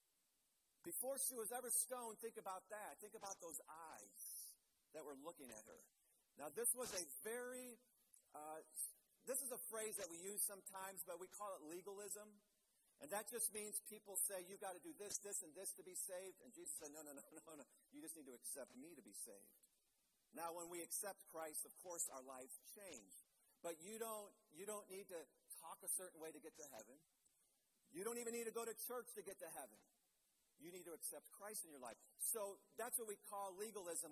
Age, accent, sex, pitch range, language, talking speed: 50-69, American, male, 180-230 Hz, English, 215 wpm